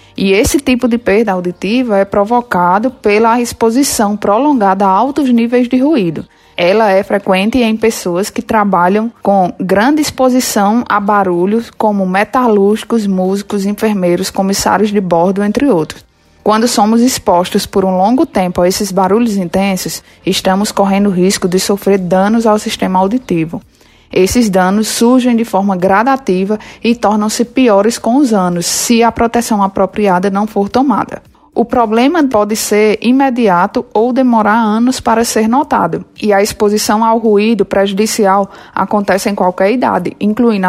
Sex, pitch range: female, 195-235 Hz